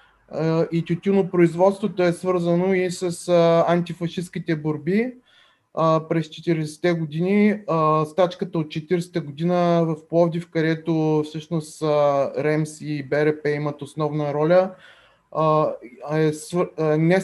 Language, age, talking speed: Bulgarian, 20-39, 100 wpm